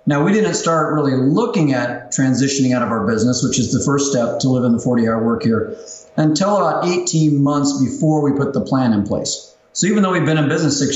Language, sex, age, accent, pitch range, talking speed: English, male, 40-59, American, 130-160 Hz, 240 wpm